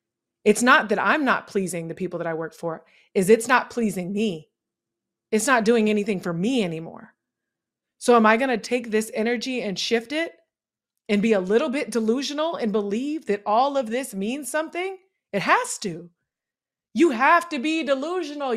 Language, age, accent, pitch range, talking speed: English, 20-39, American, 190-240 Hz, 180 wpm